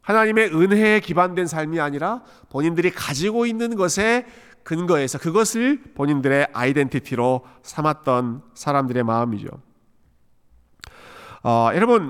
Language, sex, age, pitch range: Korean, male, 40-59, 125-180 Hz